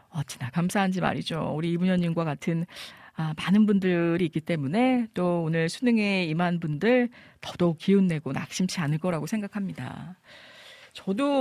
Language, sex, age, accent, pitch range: Korean, female, 40-59, native, 175-245 Hz